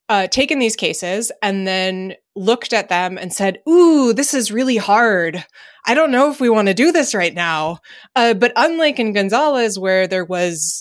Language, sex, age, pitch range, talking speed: English, female, 20-39, 180-230 Hz, 195 wpm